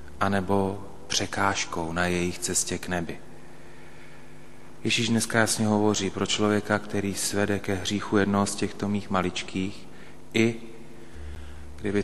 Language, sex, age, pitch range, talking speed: Slovak, male, 30-49, 85-105 Hz, 120 wpm